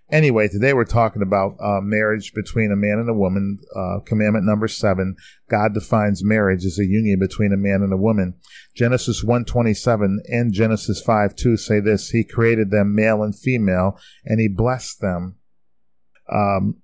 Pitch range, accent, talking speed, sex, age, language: 100-115 Hz, American, 175 wpm, male, 40-59, English